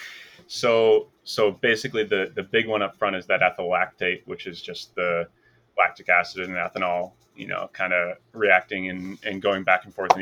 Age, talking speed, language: 30-49, 190 wpm, English